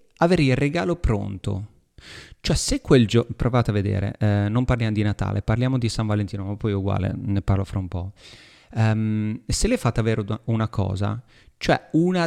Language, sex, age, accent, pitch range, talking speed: Italian, male, 30-49, native, 105-140 Hz, 180 wpm